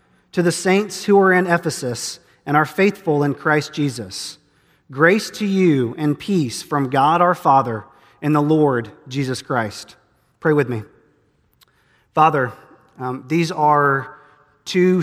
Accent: American